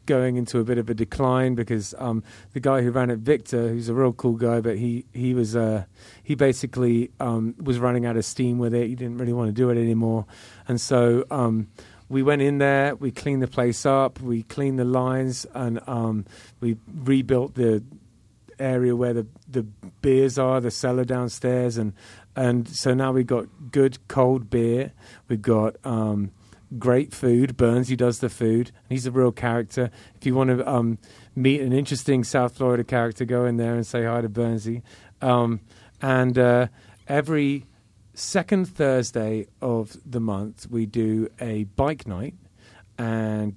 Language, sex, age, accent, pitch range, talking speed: English, male, 30-49, British, 110-130 Hz, 180 wpm